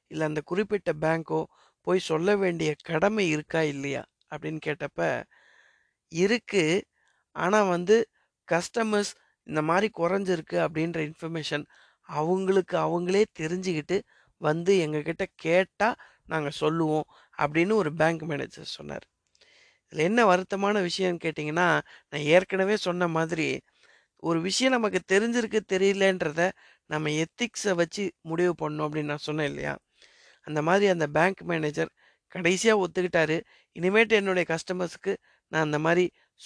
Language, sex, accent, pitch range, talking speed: Tamil, female, native, 155-195 Hz, 115 wpm